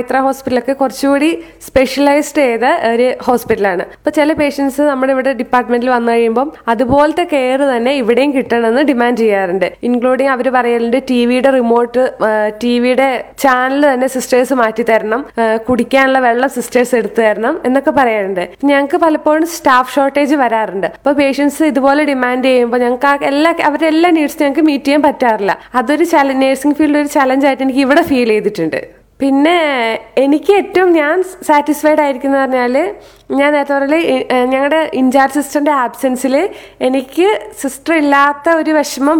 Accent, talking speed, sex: native, 130 wpm, female